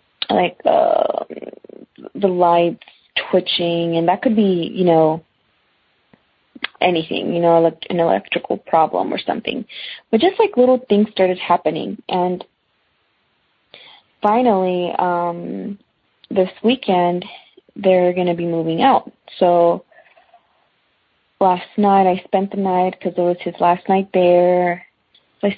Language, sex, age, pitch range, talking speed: English, female, 20-39, 175-215 Hz, 125 wpm